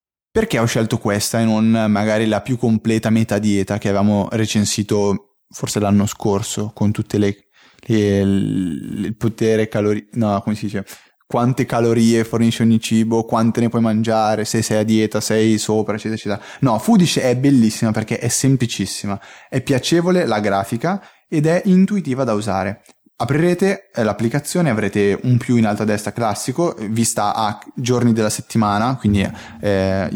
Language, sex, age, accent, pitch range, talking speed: Italian, male, 20-39, native, 105-125 Hz, 155 wpm